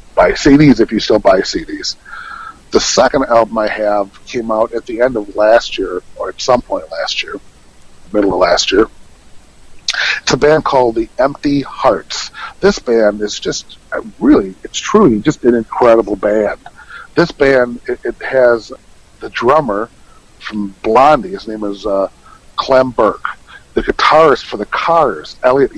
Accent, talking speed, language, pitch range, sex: American, 160 wpm, English, 110-145 Hz, male